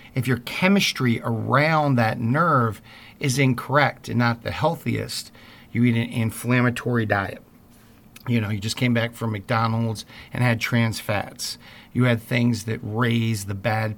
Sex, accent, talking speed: male, American, 155 wpm